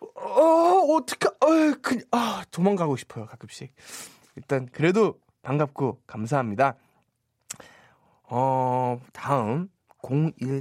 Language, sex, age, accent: Korean, male, 20-39, native